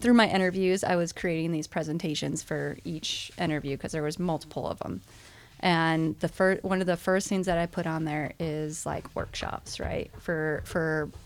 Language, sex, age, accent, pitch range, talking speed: English, female, 20-39, American, 160-185 Hz, 190 wpm